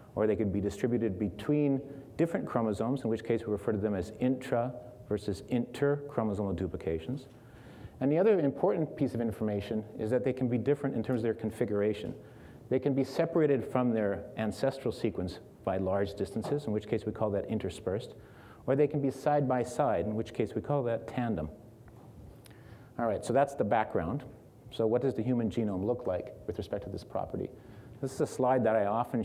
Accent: American